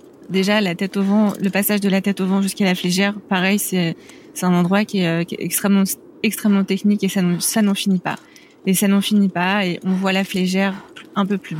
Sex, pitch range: female, 180-210 Hz